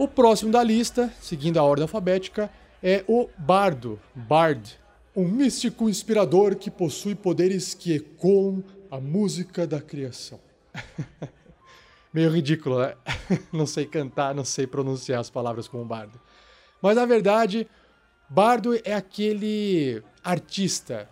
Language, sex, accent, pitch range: Portuguese, male, Brazilian, 145-195 Hz